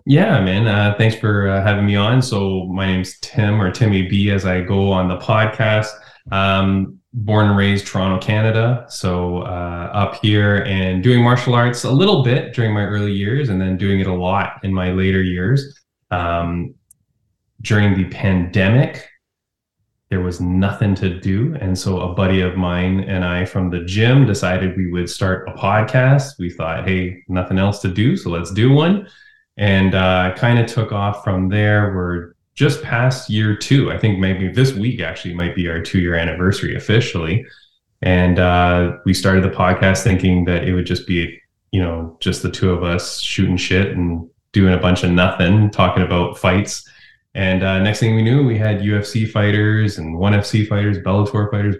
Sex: male